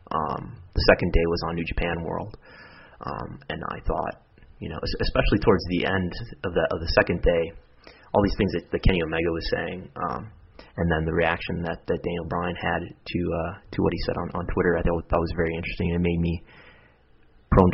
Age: 30-49